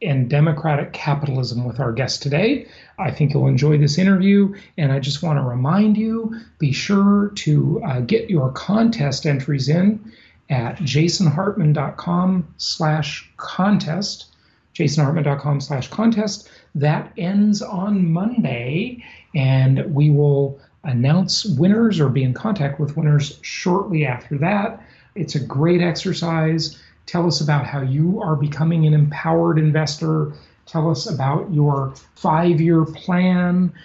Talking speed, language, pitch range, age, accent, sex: 130 wpm, English, 140-180 Hz, 40-59, American, male